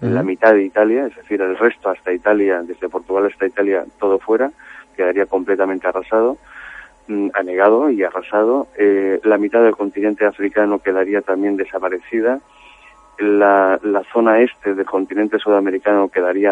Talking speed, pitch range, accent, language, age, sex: 140 wpm, 90-105 Hz, Spanish, Spanish, 30-49, male